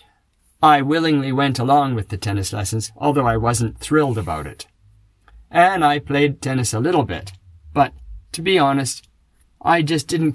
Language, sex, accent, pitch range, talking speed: English, male, American, 105-150 Hz, 160 wpm